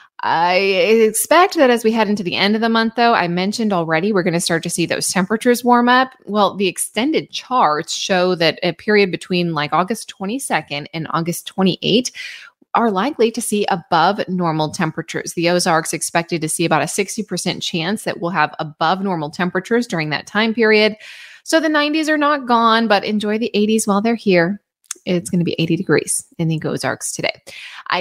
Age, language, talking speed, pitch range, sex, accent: 20-39, English, 195 wpm, 165-225 Hz, female, American